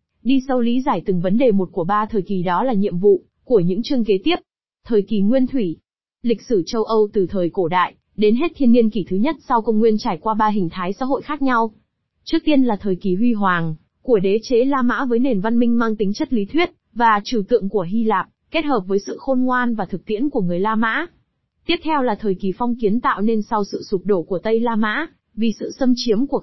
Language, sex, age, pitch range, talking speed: Vietnamese, female, 20-39, 205-250 Hz, 260 wpm